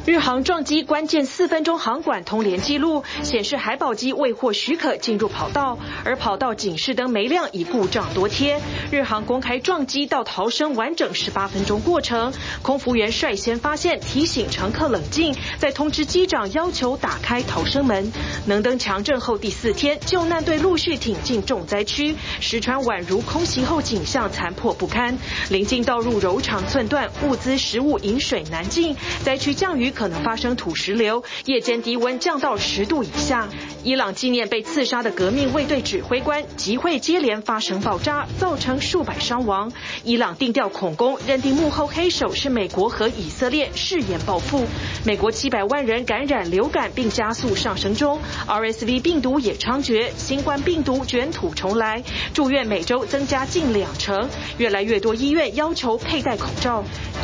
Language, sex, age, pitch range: Chinese, female, 30-49, 225-295 Hz